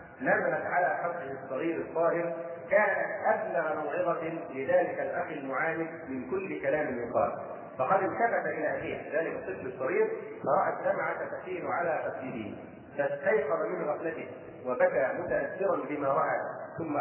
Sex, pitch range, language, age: male, 155-180 Hz, Arabic, 40-59